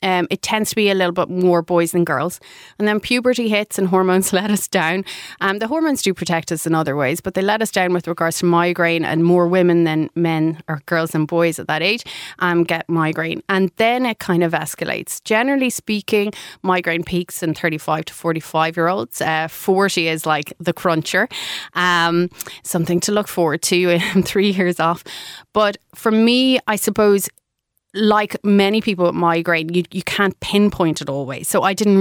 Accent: Irish